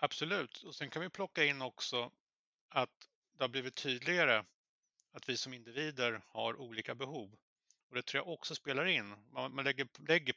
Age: 30-49